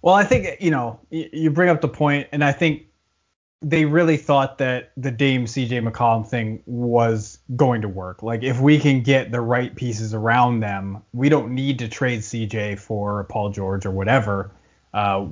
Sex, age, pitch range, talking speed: male, 20-39, 105-130 Hz, 190 wpm